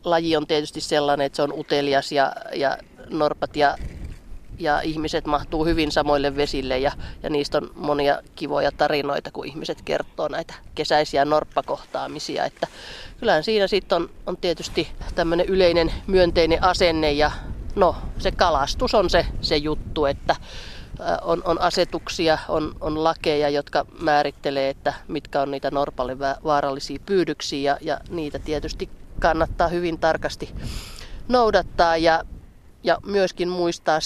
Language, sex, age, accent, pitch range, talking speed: Finnish, female, 30-49, native, 145-170 Hz, 135 wpm